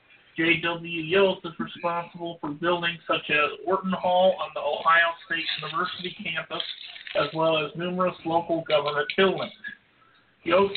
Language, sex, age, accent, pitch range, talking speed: English, male, 50-69, American, 165-190 Hz, 135 wpm